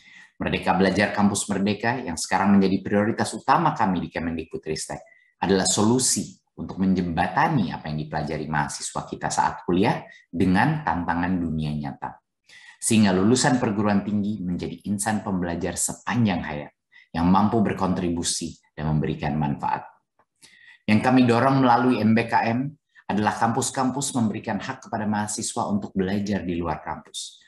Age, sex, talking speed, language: 30-49, male, 125 wpm, Indonesian